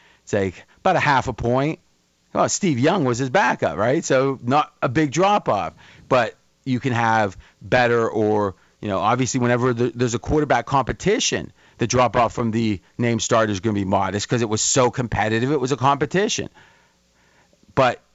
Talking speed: 180 wpm